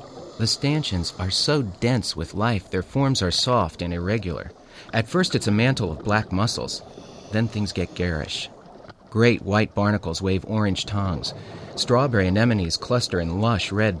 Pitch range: 95-125 Hz